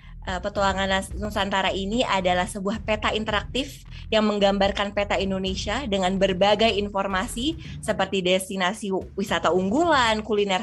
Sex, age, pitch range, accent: female, 20-39, 185-220 Hz, native